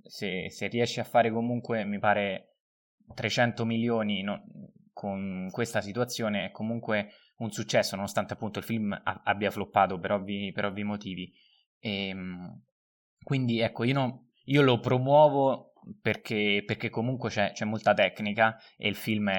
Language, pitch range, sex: Italian, 100-125 Hz, male